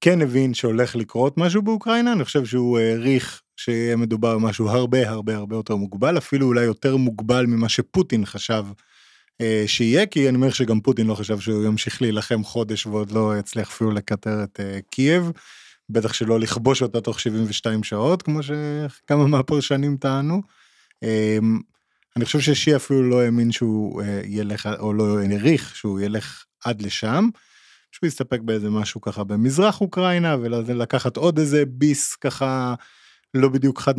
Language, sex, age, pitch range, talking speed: Hebrew, male, 20-39, 105-140 Hz, 160 wpm